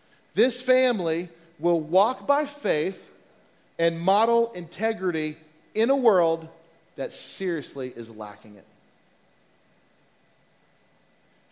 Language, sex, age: English, male, 40-59